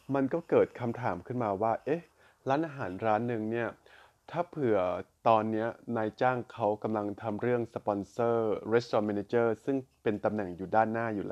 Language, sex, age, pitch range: Thai, male, 20-39, 105-120 Hz